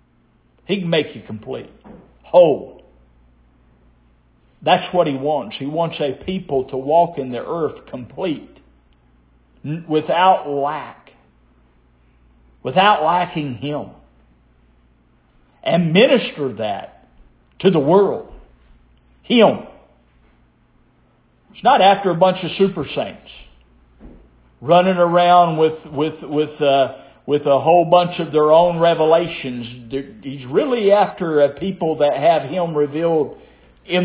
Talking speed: 115 wpm